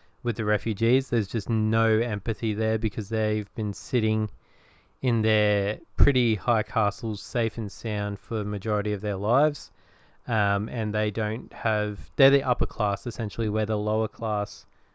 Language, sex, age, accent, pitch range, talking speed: English, male, 20-39, Australian, 105-120 Hz, 160 wpm